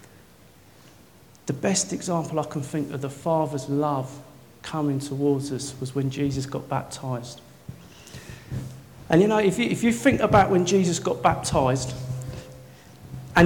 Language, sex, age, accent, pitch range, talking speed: English, male, 40-59, British, 145-170 Hz, 140 wpm